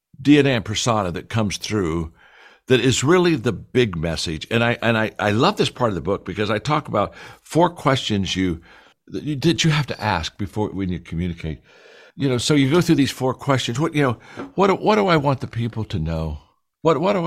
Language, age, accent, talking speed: English, 60-79, American, 235 wpm